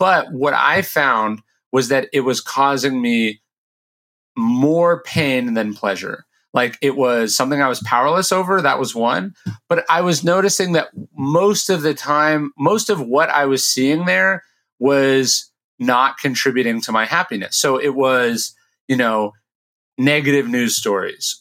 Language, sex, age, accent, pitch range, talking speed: English, male, 30-49, American, 125-170 Hz, 155 wpm